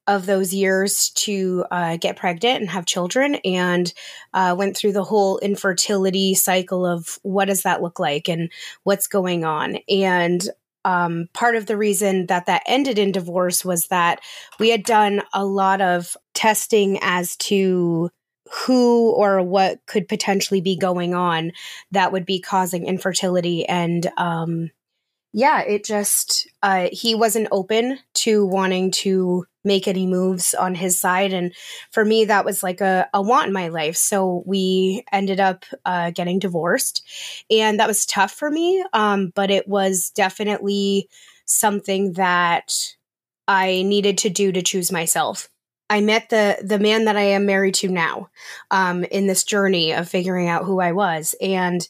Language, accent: English, American